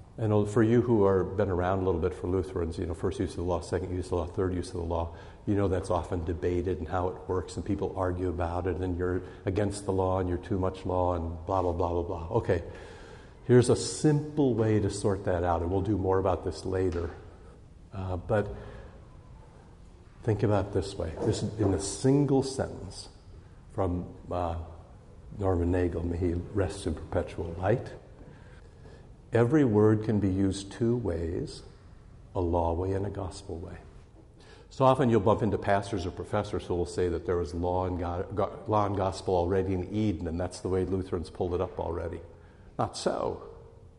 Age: 60-79